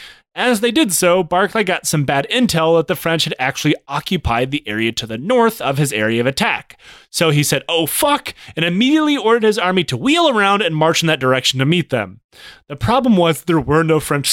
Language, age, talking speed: English, 30-49, 220 wpm